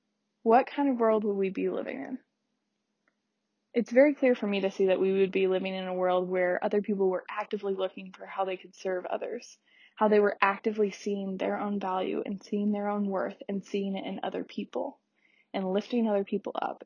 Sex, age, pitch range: female, 20-39, 195-225 Hz